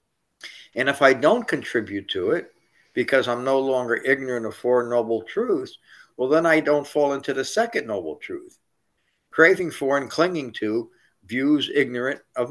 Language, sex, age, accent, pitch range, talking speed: English, male, 60-79, American, 125-180 Hz, 165 wpm